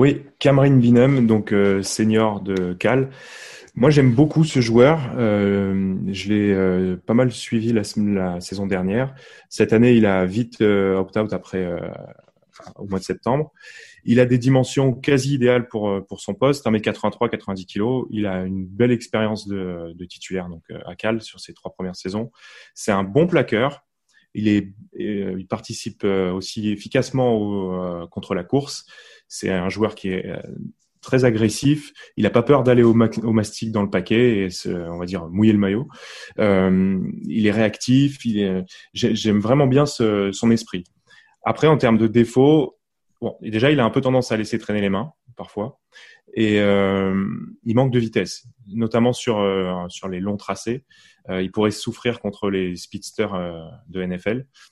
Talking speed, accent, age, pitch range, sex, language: 180 wpm, French, 20-39, 95-120 Hz, male, French